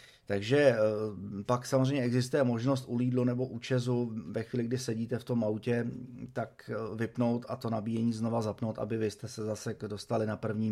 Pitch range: 110-130 Hz